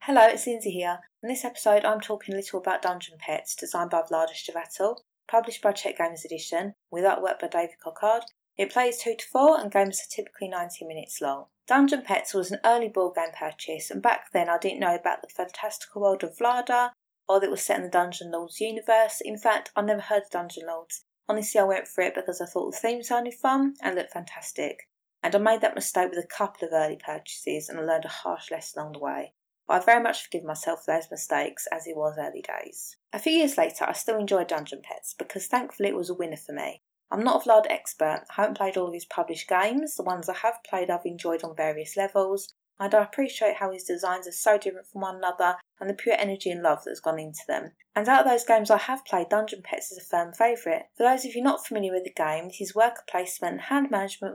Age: 20-39